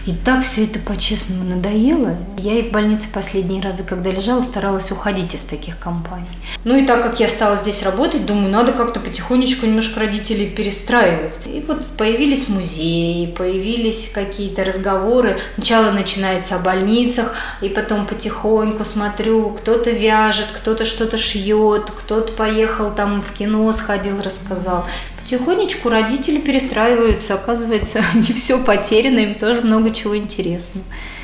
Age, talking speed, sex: 20-39, 140 wpm, female